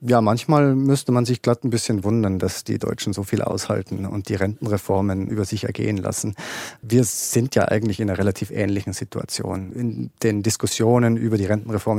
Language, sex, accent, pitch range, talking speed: German, male, German, 100-115 Hz, 185 wpm